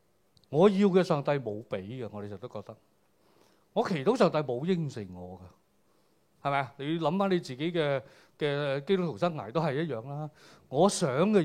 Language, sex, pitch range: Chinese, male, 135-200 Hz